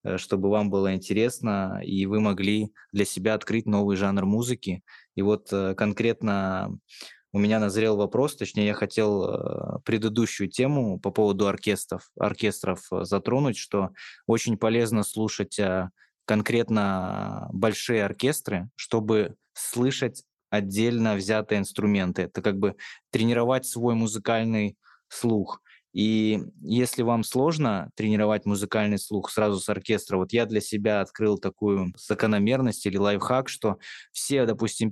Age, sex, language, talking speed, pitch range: 20-39, male, Russian, 120 wpm, 100-115 Hz